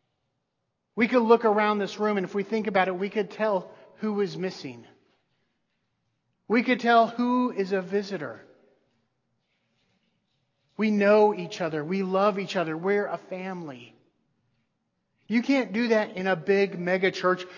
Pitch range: 180-215 Hz